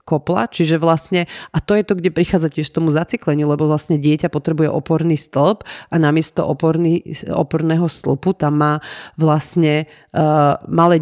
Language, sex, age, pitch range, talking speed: Slovak, female, 30-49, 145-165 Hz, 155 wpm